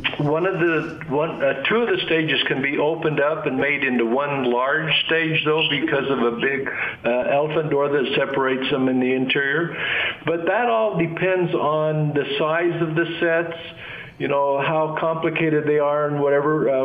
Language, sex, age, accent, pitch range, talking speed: English, male, 50-69, American, 130-155 Hz, 180 wpm